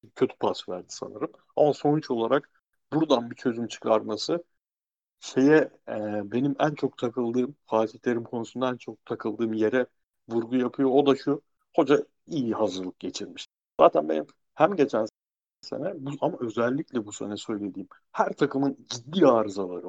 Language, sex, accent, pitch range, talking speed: Turkish, male, native, 120-155 Hz, 140 wpm